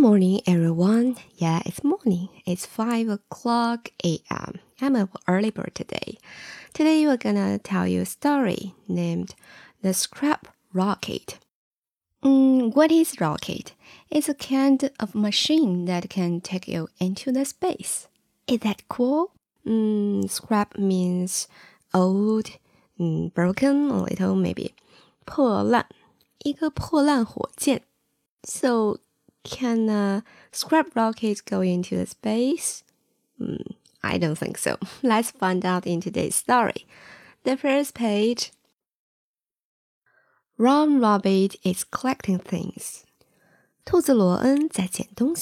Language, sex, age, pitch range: Chinese, female, 20-39, 190-275 Hz